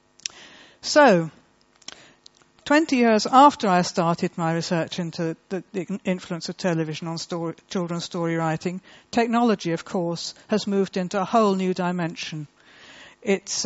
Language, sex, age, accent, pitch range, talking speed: English, female, 60-79, British, 170-230 Hz, 125 wpm